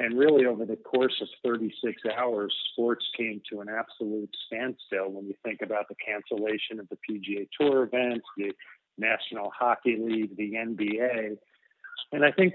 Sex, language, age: male, English, 40-59